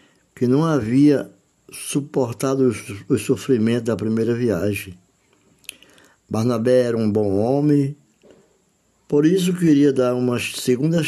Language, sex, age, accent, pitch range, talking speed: Portuguese, male, 60-79, Brazilian, 100-140 Hz, 110 wpm